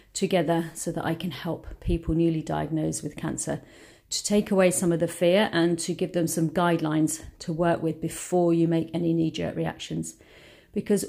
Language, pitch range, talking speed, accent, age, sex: English, 160-185 Hz, 185 wpm, British, 40-59, female